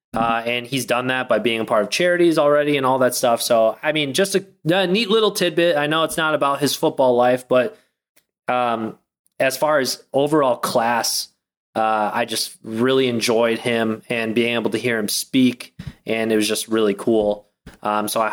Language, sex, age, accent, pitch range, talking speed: English, male, 20-39, American, 115-135 Hz, 205 wpm